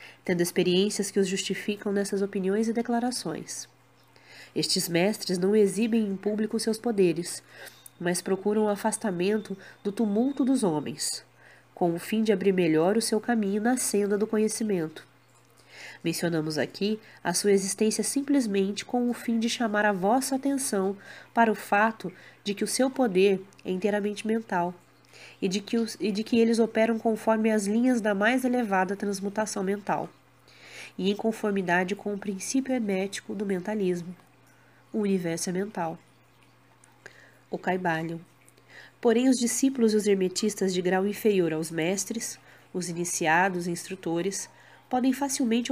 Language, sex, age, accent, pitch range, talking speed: Portuguese, female, 20-39, Brazilian, 180-225 Hz, 145 wpm